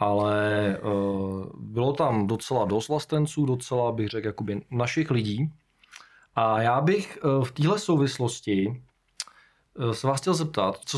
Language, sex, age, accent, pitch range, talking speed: Czech, male, 20-39, native, 115-150 Hz, 125 wpm